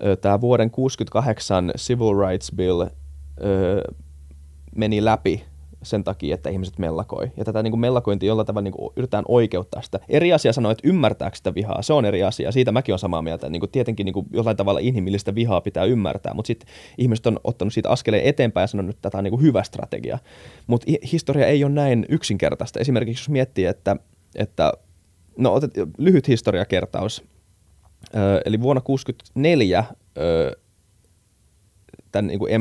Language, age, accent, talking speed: Finnish, 20-39, native, 150 wpm